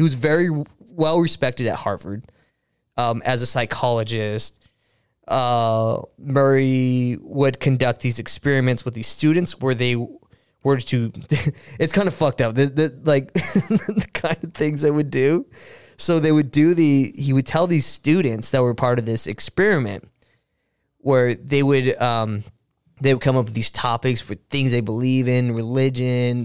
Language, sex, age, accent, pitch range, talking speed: English, male, 20-39, American, 115-140 Hz, 165 wpm